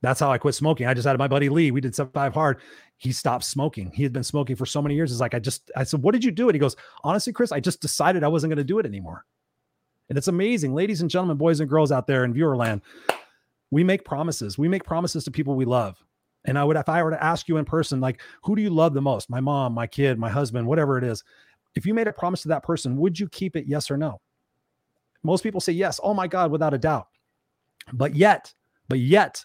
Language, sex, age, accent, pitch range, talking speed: English, male, 30-49, American, 135-165 Hz, 270 wpm